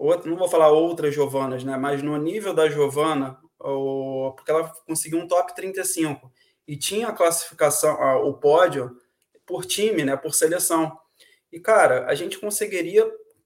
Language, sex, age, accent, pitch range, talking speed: Portuguese, male, 20-39, Brazilian, 155-190 Hz, 160 wpm